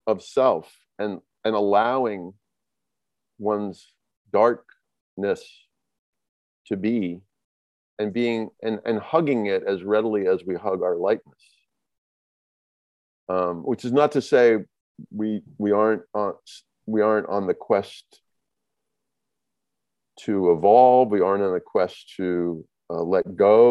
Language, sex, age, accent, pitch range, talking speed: English, male, 50-69, American, 95-155 Hz, 120 wpm